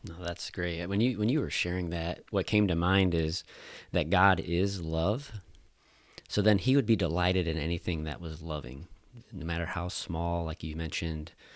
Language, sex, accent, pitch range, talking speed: English, male, American, 80-95 Hz, 190 wpm